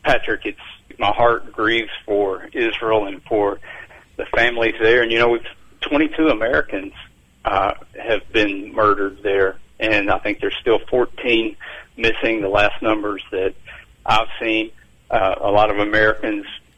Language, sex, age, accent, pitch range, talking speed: English, male, 50-69, American, 100-115 Hz, 145 wpm